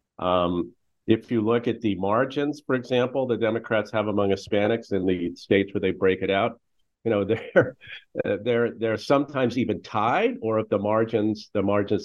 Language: English